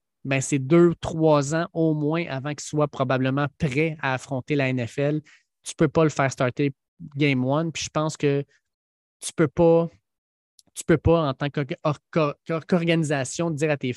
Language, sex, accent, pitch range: French, male, Canadian, 135-165 Hz